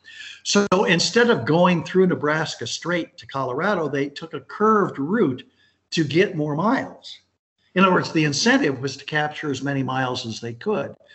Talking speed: 170 wpm